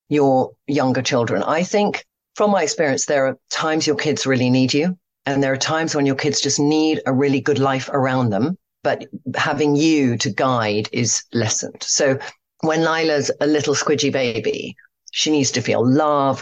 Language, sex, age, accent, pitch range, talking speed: English, female, 40-59, British, 130-160 Hz, 185 wpm